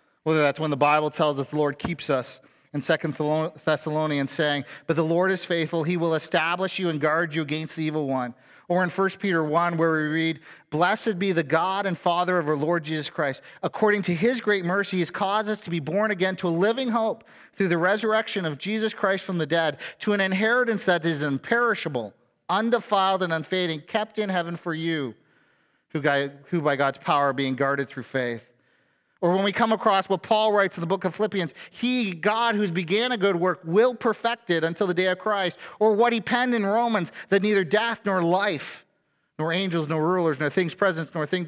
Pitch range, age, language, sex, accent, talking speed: 160-205 Hz, 40-59, English, male, American, 215 wpm